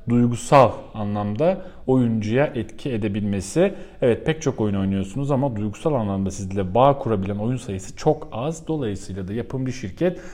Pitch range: 95-145 Hz